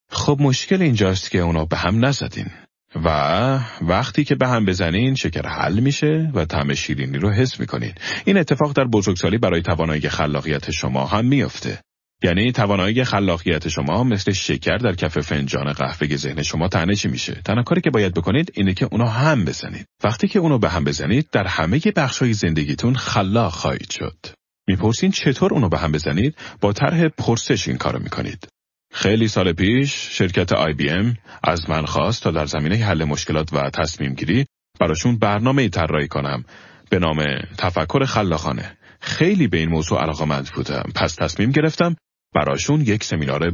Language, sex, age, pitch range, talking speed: Persian, male, 40-59, 80-130 Hz, 170 wpm